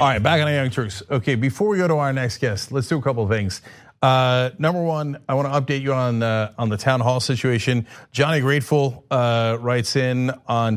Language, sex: English, male